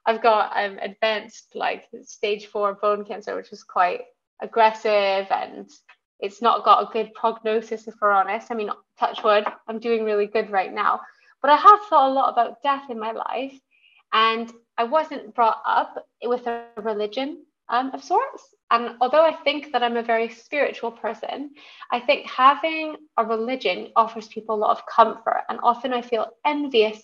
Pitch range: 220-270 Hz